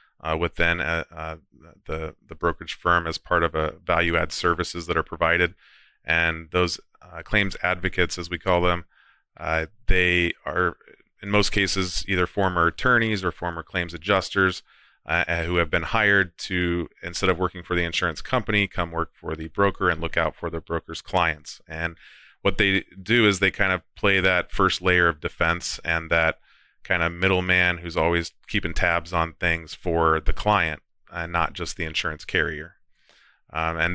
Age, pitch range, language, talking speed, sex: 30-49, 80-90 Hz, English, 180 wpm, male